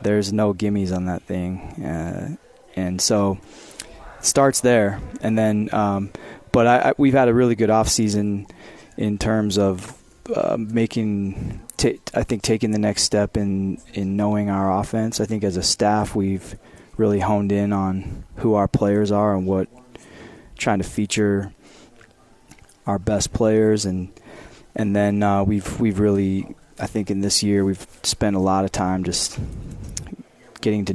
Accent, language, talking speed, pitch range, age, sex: American, English, 165 wpm, 95-110 Hz, 20-39, male